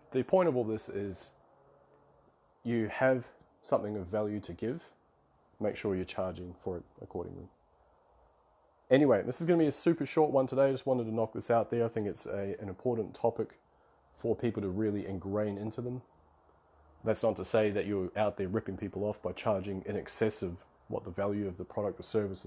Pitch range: 95-115 Hz